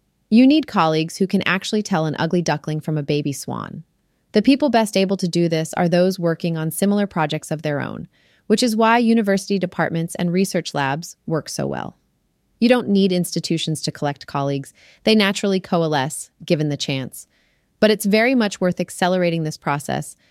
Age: 30-49